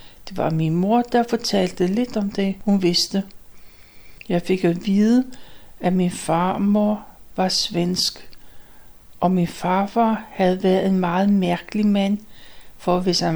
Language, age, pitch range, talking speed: Danish, 60-79, 180-215 Hz, 145 wpm